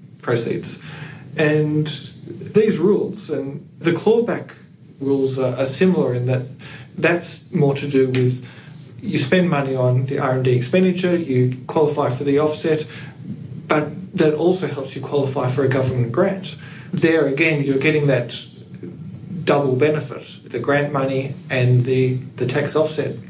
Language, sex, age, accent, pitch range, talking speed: English, male, 40-59, Australian, 135-165 Hz, 140 wpm